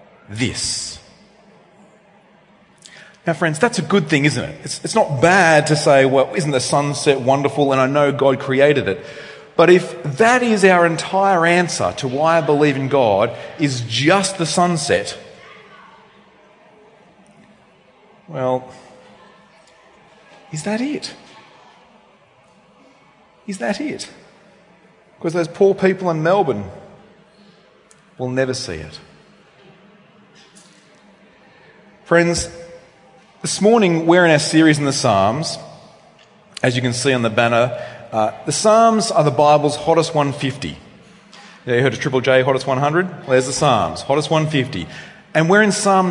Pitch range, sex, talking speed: 140-205 Hz, male, 135 wpm